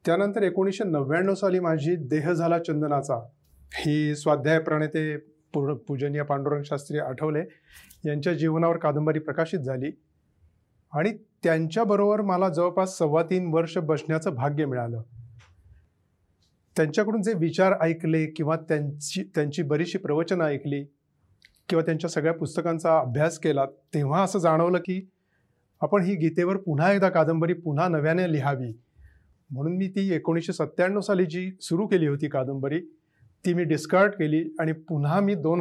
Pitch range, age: 145-180 Hz, 30-49